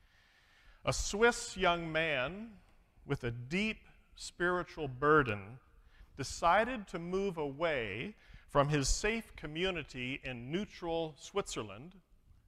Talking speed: 95 wpm